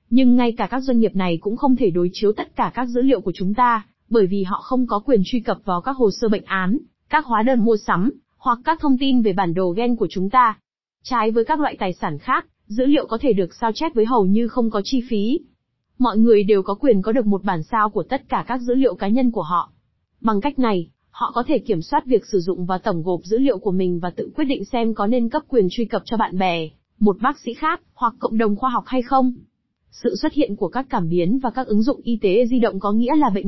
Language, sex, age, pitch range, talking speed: Vietnamese, female, 20-39, 205-255 Hz, 275 wpm